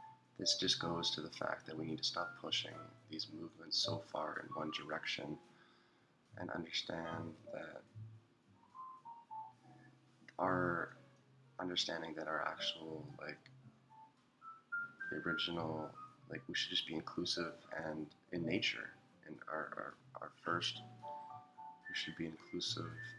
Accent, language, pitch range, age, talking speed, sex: American, English, 90-145 Hz, 20-39, 120 wpm, male